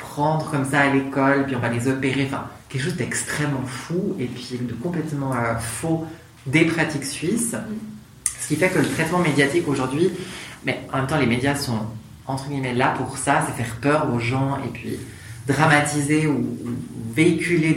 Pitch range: 125-150 Hz